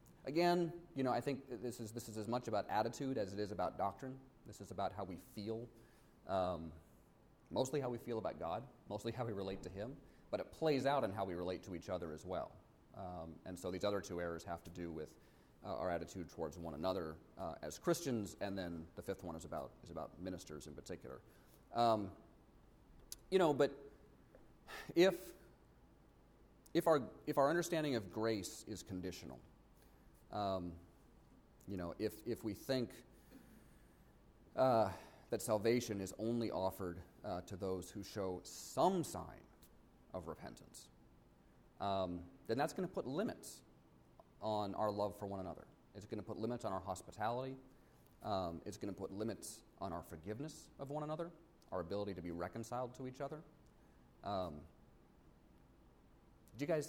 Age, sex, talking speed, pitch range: 30-49, male, 170 wpm, 90-120 Hz